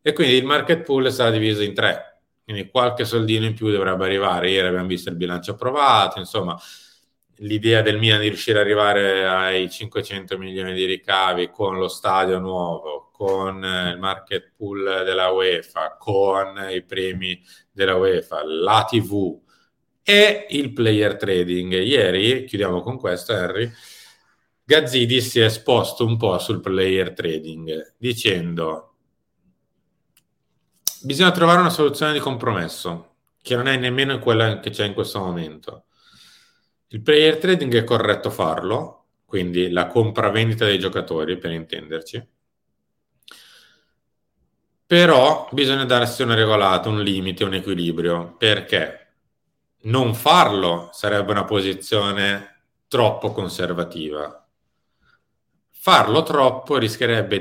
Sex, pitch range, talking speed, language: male, 95-120 Hz, 125 wpm, Italian